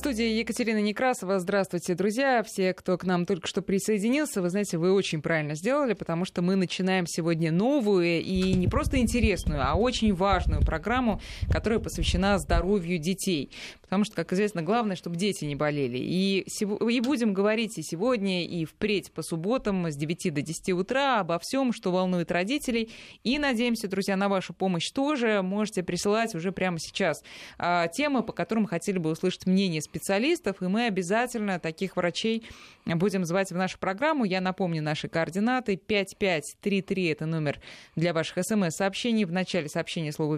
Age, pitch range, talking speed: 20-39, 175-220 Hz, 165 wpm